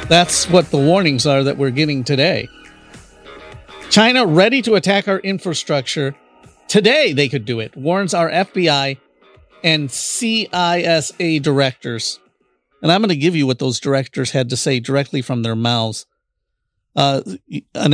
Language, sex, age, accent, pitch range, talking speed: English, male, 50-69, American, 125-175 Hz, 145 wpm